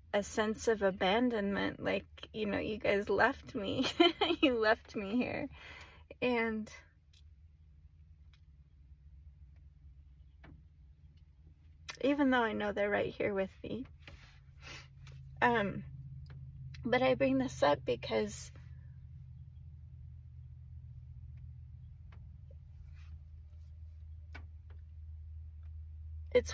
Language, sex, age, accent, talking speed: English, female, 30-49, American, 75 wpm